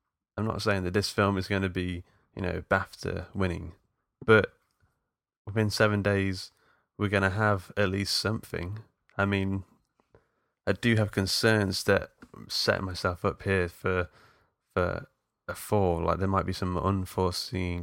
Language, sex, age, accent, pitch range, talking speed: English, male, 20-39, British, 90-105 Hz, 155 wpm